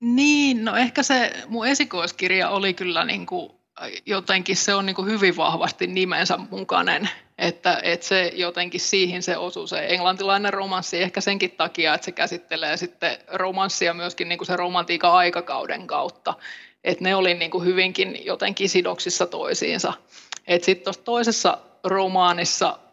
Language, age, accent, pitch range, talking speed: Finnish, 20-39, native, 175-195 Hz, 140 wpm